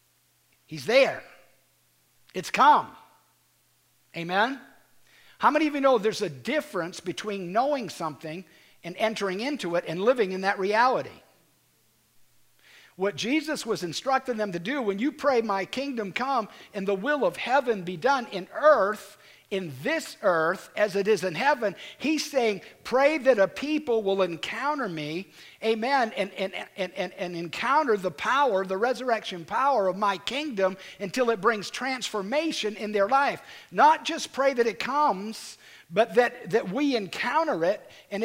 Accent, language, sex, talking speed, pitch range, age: American, English, male, 155 wpm, 195-270 Hz, 50-69